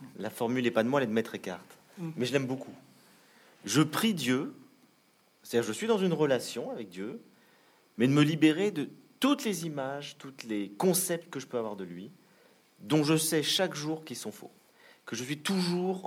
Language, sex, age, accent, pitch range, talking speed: French, male, 40-59, French, 105-145 Hz, 205 wpm